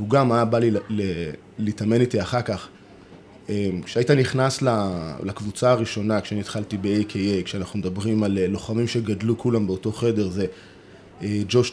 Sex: male